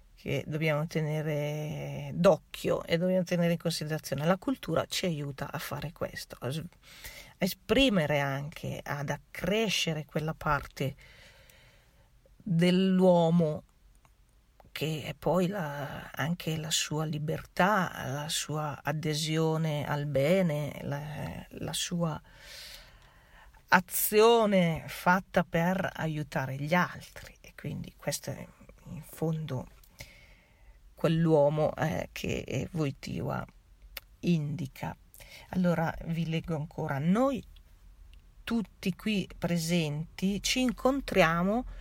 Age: 40-59